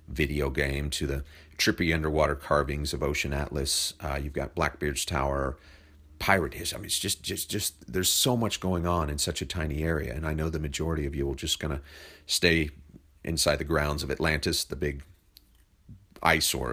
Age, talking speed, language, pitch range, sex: 40-59, 185 wpm, English, 70-85 Hz, male